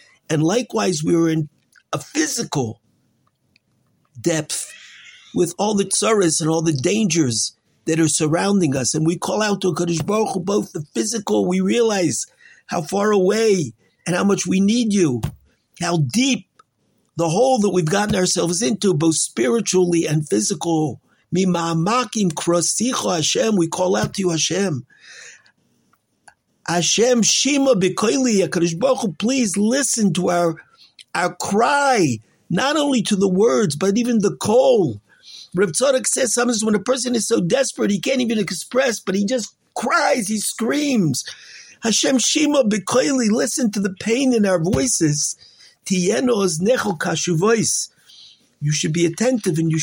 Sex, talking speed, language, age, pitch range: male, 140 wpm, English, 50-69, 165-230 Hz